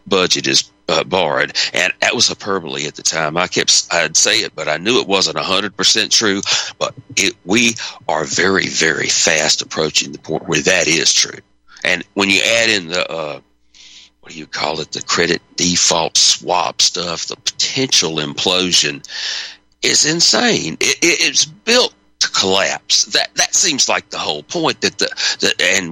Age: 60-79